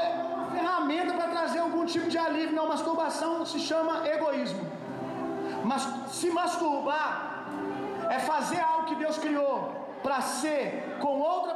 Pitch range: 280-335 Hz